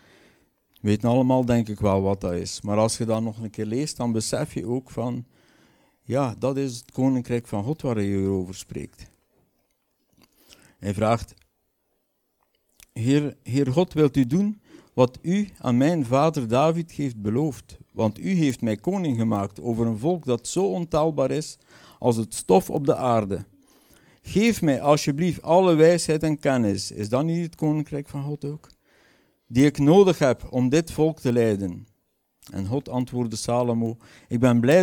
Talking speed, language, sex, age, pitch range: 170 wpm, Dutch, male, 60-79, 105-145 Hz